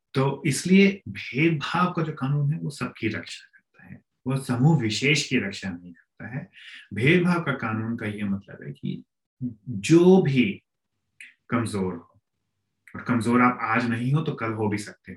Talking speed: 170 wpm